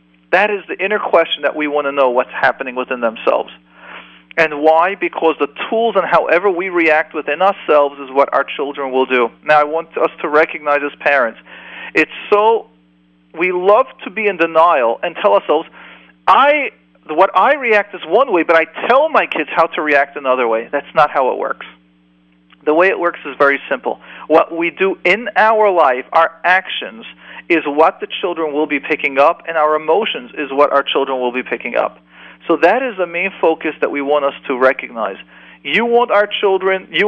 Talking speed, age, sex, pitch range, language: 200 wpm, 40-59, male, 140-185 Hz, English